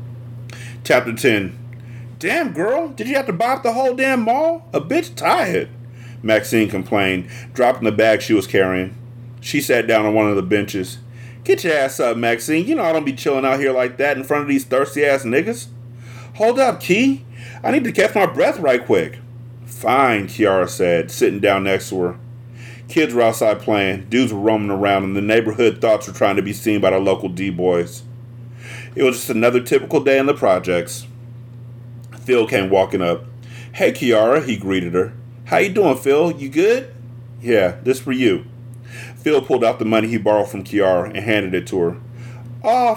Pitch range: 110-130 Hz